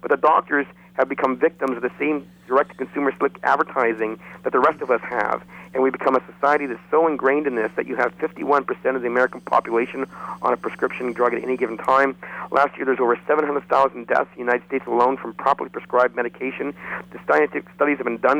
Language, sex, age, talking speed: English, male, 50-69, 210 wpm